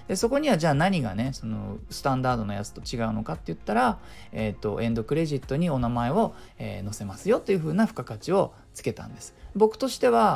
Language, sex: Japanese, male